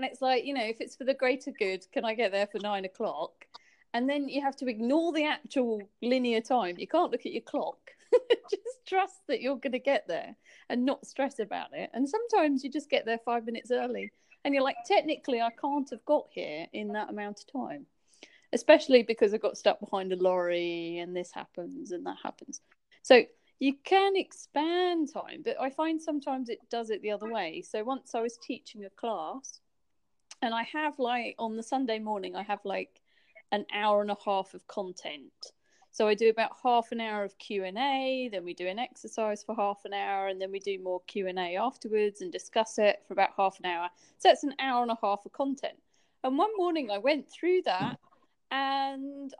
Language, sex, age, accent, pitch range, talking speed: English, female, 30-49, British, 205-280 Hz, 210 wpm